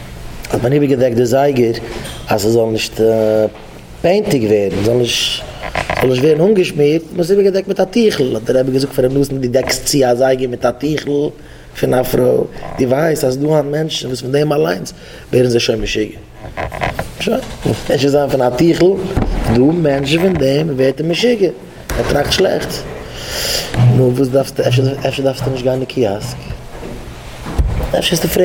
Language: English